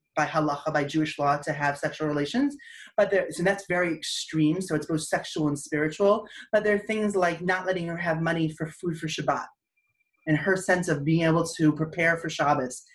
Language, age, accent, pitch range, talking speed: English, 30-49, American, 155-190 Hz, 210 wpm